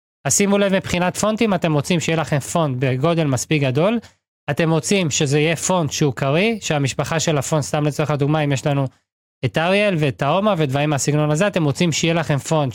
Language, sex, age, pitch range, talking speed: Hebrew, male, 20-39, 145-185 Hz, 195 wpm